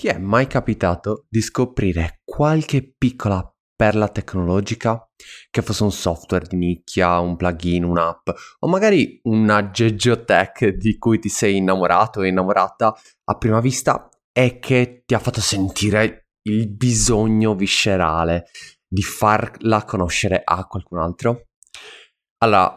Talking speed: 130 wpm